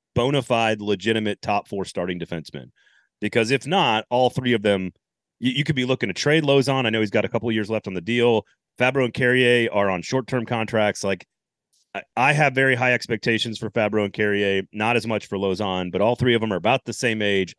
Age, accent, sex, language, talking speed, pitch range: 30-49, American, male, English, 230 wpm, 100-130 Hz